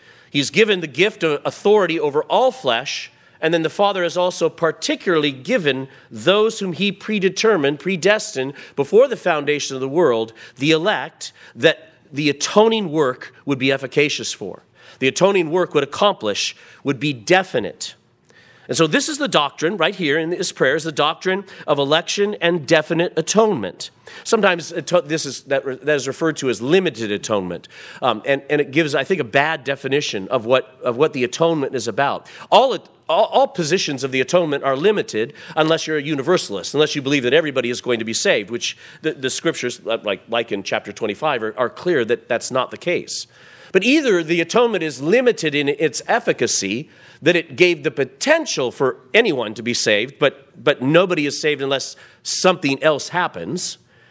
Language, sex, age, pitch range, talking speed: English, male, 40-59, 140-185 Hz, 180 wpm